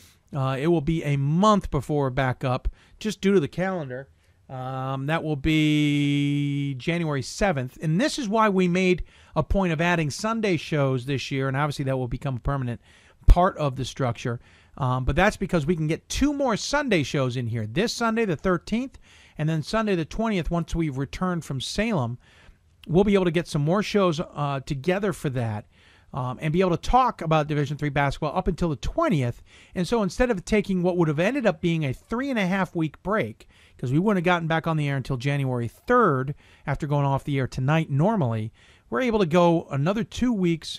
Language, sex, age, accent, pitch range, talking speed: English, male, 40-59, American, 130-180 Hz, 205 wpm